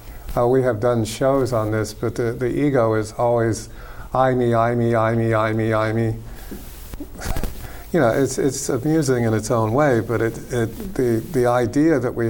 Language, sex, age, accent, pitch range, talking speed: English, male, 50-69, American, 110-130 Hz, 195 wpm